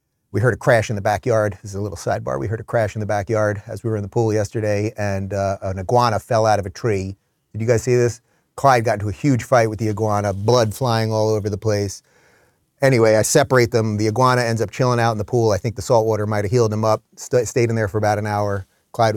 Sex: male